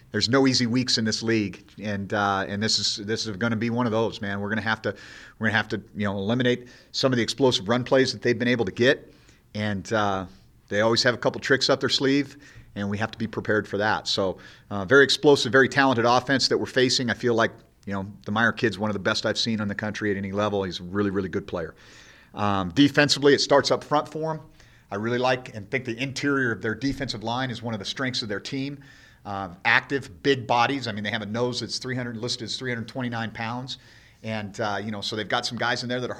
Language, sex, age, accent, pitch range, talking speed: English, male, 40-59, American, 105-130 Hz, 260 wpm